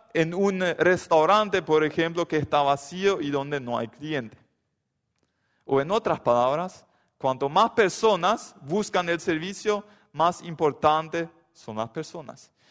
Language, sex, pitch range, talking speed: Spanish, male, 145-195 Hz, 130 wpm